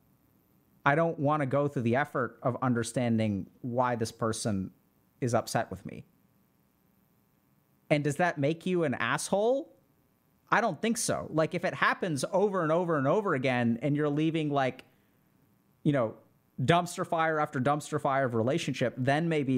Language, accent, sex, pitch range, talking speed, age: English, American, male, 120-160 Hz, 160 wpm, 30-49